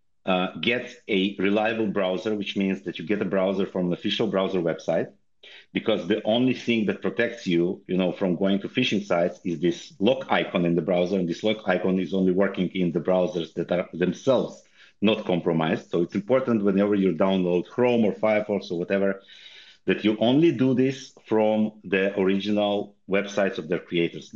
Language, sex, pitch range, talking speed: English, male, 95-110 Hz, 185 wpm